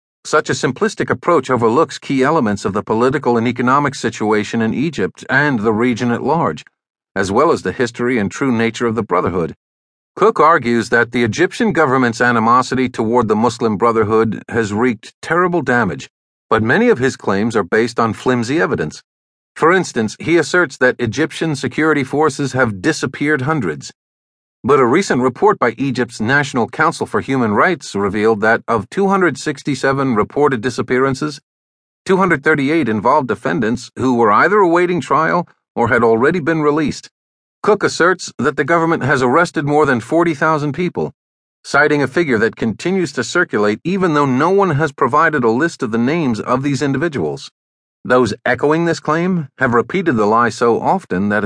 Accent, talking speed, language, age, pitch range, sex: American, 165 wpm, English, 50-69, 115-155 Hz, male